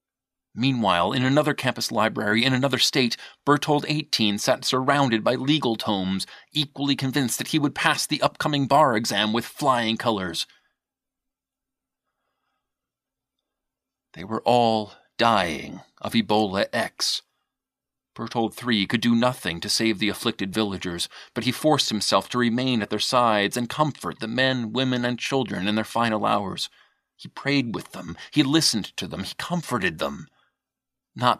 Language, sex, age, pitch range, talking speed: English, male, 40-59, 110-130 Hz, 145 wpm